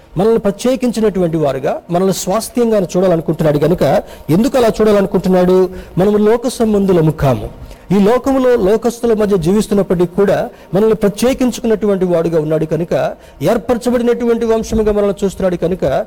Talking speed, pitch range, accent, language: 110 wpm, 160-215 Hz, native, Telugu